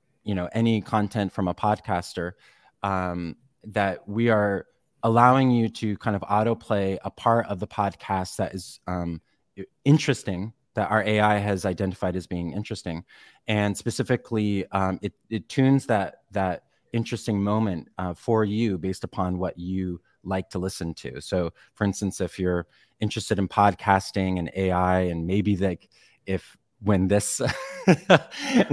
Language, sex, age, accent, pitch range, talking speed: English, male, 30-49, American, 90-110 Hz, 150 wpm